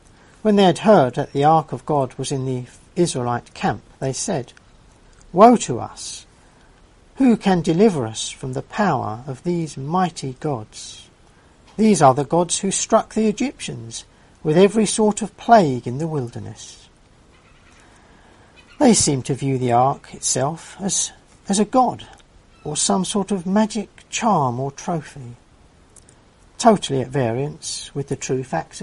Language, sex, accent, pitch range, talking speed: English, male, British, 120-180 Hz, 150 wpm